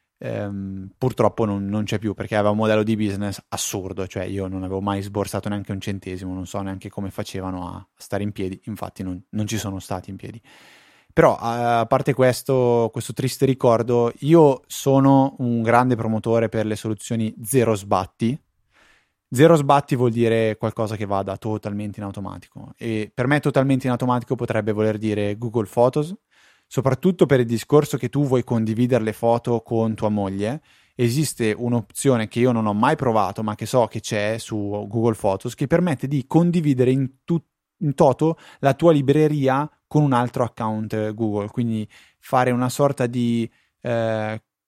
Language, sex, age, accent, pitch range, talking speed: Italian, male, 20-39, native, 105-135 Hz, 170 wpm